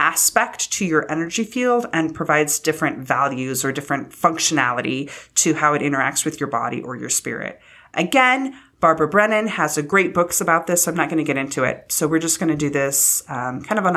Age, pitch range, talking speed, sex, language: 30-49, 150-195 Hz, 210 wpm, female, English